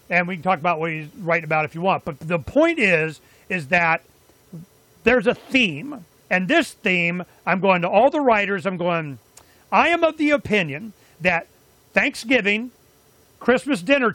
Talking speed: 175 wpm